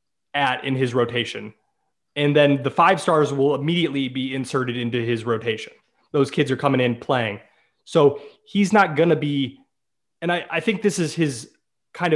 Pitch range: 130-155 Hz